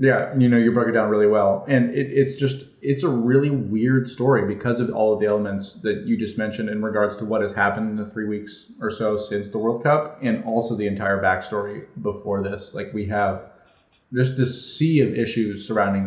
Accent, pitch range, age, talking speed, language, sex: American, 105-125 Hz, 30-49, 225 wpm, English, male